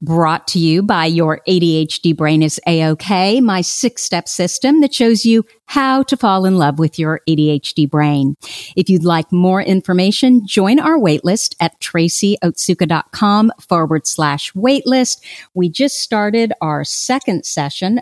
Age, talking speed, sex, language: 50-69, 145 wpm, female, English